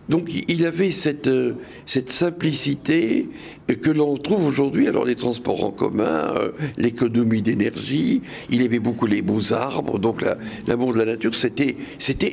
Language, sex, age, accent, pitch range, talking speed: French, male, 60-79, French, 115-160 Hz, 140 wpm